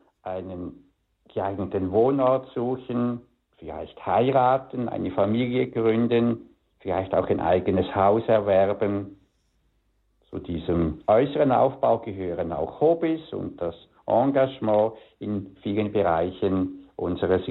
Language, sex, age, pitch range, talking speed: German, male, 60-79, 100-130 Hz, 100 wpm